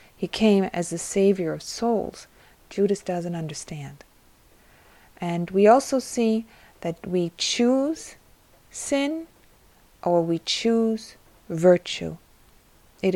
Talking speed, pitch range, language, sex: 105 wpm, 170-200 Hz, English, female